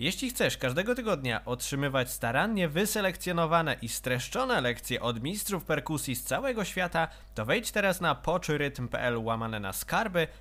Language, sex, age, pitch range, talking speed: Polish, male, 20-39, 120-180 Hz, 140 wpm